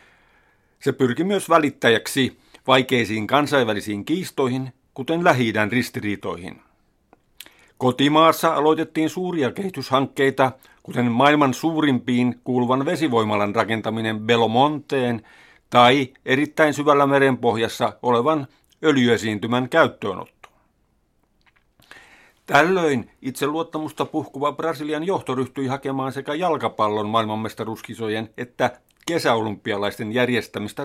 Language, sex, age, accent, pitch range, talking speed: Finnish, male, 60-79, native, 120-150 Hz, 80 wpm